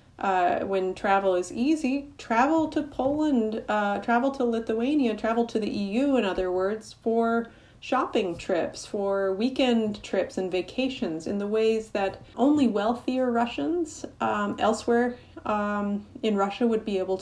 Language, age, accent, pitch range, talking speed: English, 30-49, American, 195-255 Hz, 140 wpm